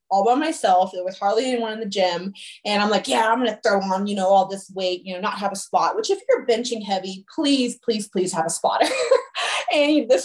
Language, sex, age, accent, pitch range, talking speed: English, female, 20-39, American, 200-265 Hz, 250 wpm